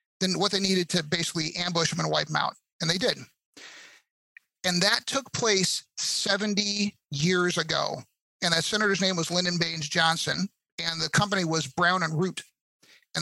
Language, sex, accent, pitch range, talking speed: English, male, American, 165-195 Hz, 170 wpm